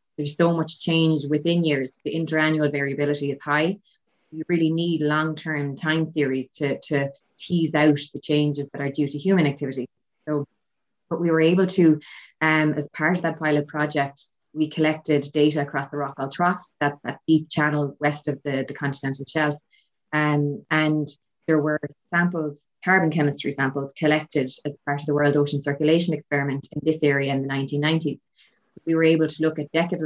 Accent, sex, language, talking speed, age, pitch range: Irish, female, English, 180 wpm, 20-39, 145-155 Hz